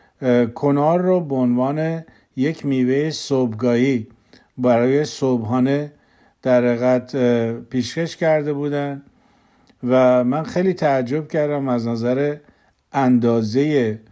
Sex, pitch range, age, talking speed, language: male, 120-145 Hz, 50-69, 95 wpm, Persian